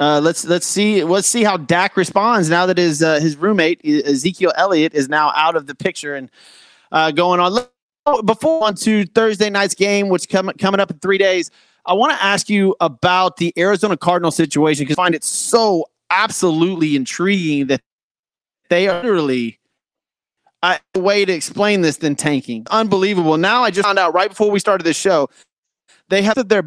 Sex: male